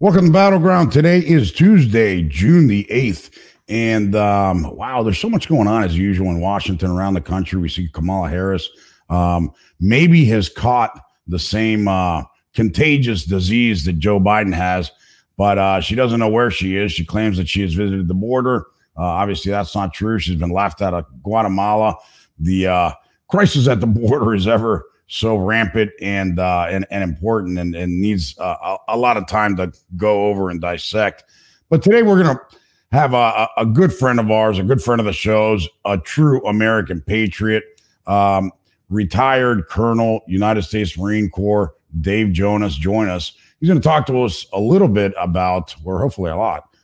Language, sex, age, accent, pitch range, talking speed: English, male, 50-69, American, 90-110 Hz, 185 wpm